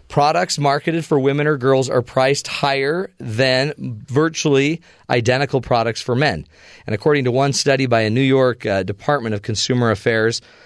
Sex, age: male, 40-59